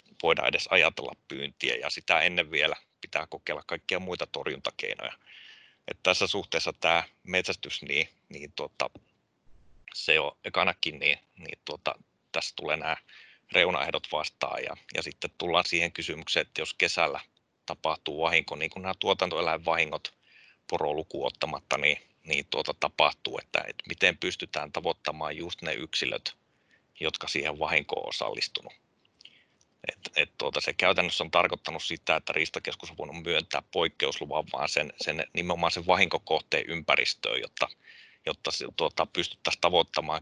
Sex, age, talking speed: male, 30-49, 135 wpm